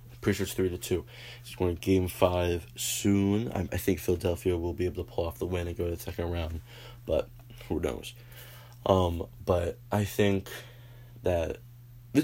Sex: male